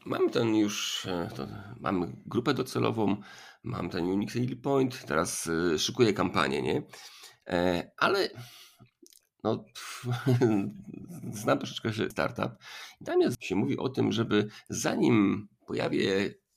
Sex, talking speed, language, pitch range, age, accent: male, 110 wpm, Polish, 105-130 Hz, 50-69, native